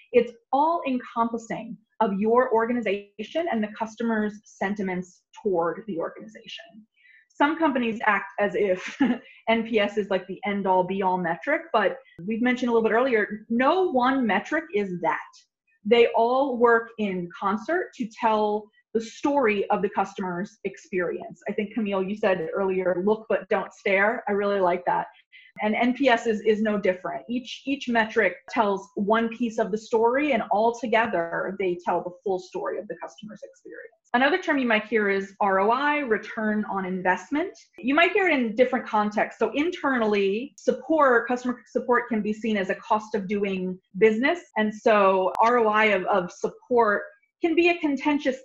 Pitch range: 200-255 Hz